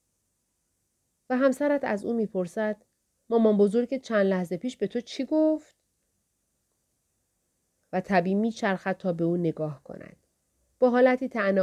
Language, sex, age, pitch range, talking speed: Persian, female, 40-59, 175-225 Hz, 130 wpm